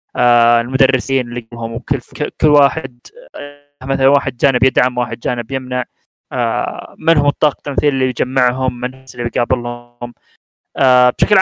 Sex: male